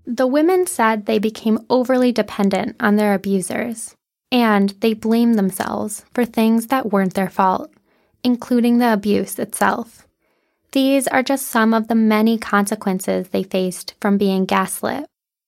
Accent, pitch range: American, 200-245 Hz